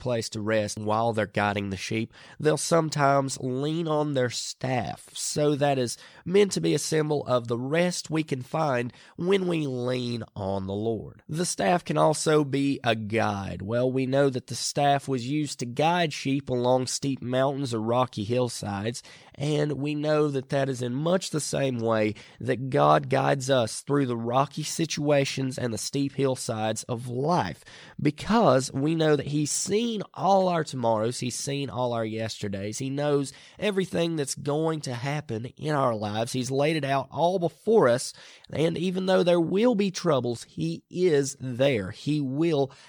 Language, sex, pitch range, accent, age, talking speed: English, male, 120-155 Hz, American, 20-39, 180 wpm